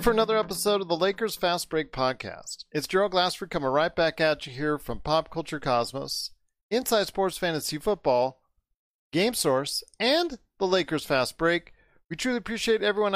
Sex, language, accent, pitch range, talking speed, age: male, English, American, 145-190 Hz, 170 wpm, 40-59